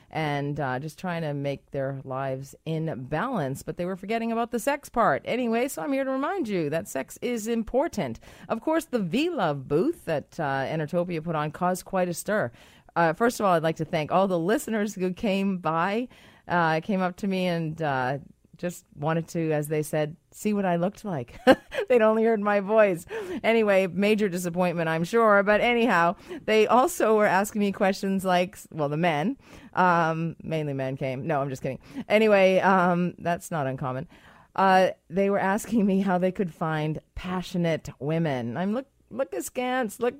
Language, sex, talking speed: English, female, 190 wpm